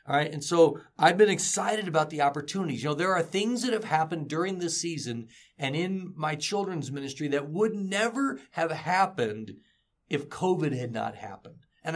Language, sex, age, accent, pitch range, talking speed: English, male, 50-69, American, 130-160 Hz, 185 wpm